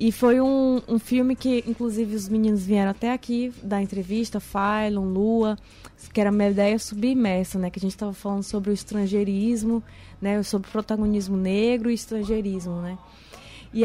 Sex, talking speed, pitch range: female, 175 wpm, 205-245 Hz